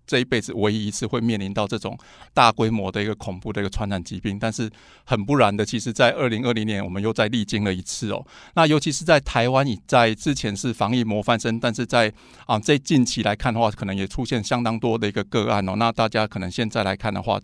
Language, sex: Chinese, male